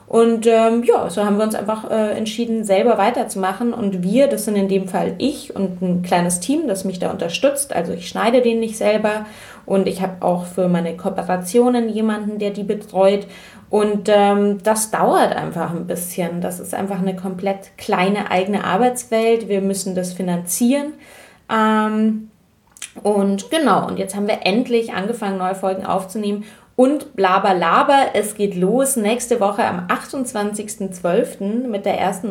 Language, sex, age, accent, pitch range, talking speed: German, female, 20-39, German, 195-230 Hz, 165 wpm